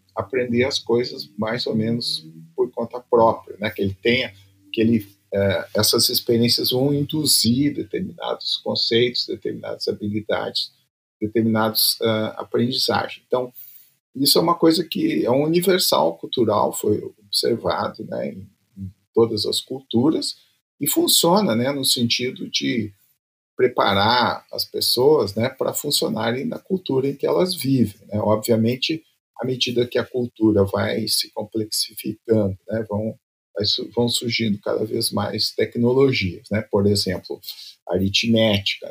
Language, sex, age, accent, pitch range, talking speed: Portuguese, male, 50-69, Brazilian, 105-140 Hz, 130 wpm